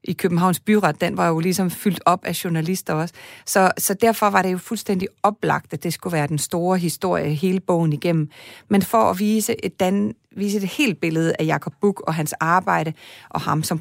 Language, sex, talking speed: Danish, female, 200 wpm